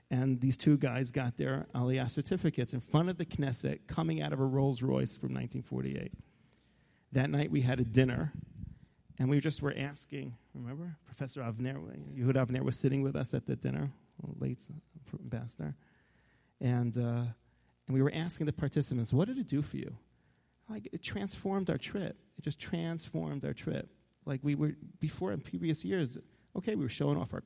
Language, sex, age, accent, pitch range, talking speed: English, male, 30-49, American, 125-155 Hz, 185 wpm